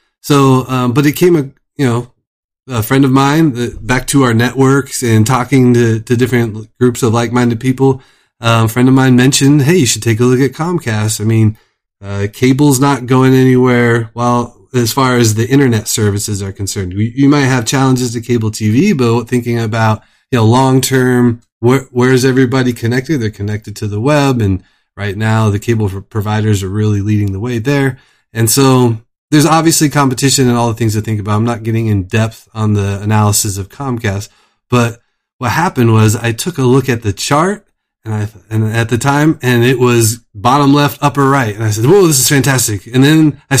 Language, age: English, 20-39